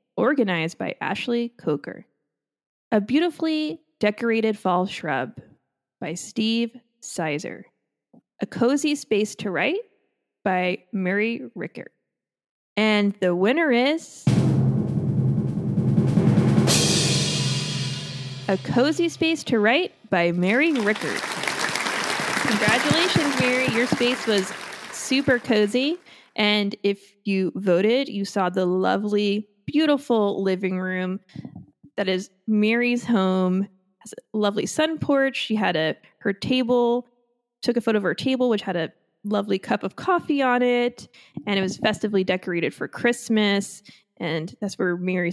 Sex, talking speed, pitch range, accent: female, 120 wpm, 185-240 Hz, American